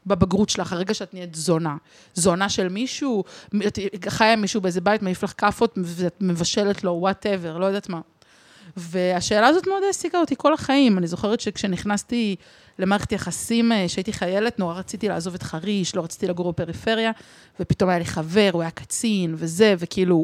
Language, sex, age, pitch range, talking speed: Hebrew, female, 30-49, 185-225 Hz, 160 wpm